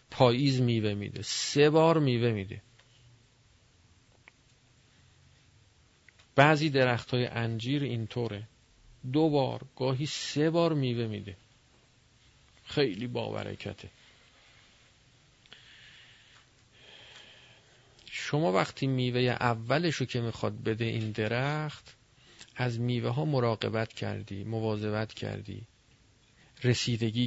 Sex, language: male, Persian